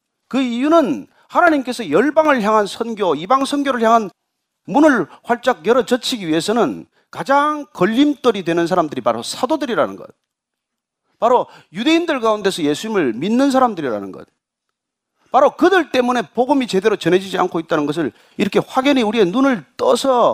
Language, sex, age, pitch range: Korean, male, 40-59, 200-275 Hz